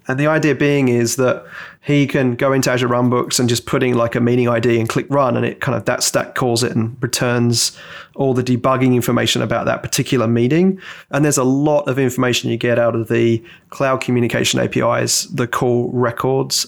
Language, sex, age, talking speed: English, male, 30-49, 205 wpm